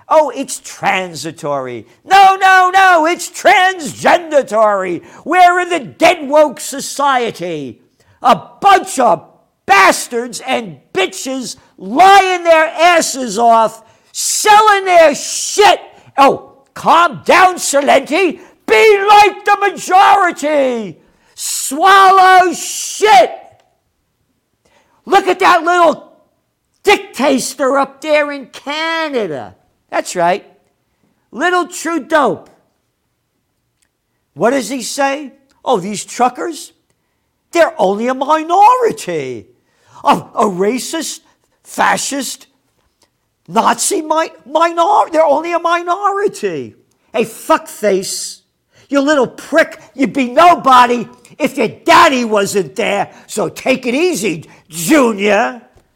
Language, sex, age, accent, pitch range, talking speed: English, male, 50-69, American, 225-350 Hz, 95 wpm